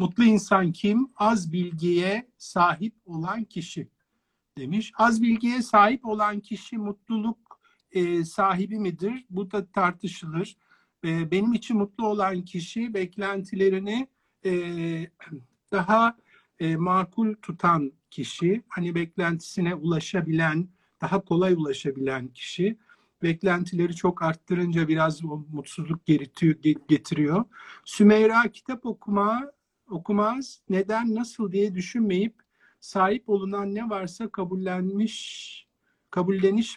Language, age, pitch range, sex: Turkish, 50-69, 165-220 Hz, male